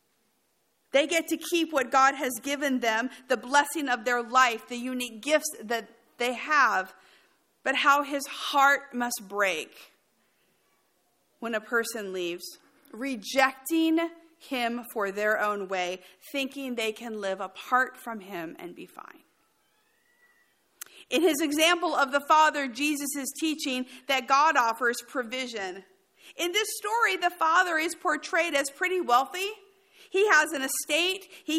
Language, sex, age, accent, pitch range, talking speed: English, female, 50-69, American, 250-320 Hz, 140 wpm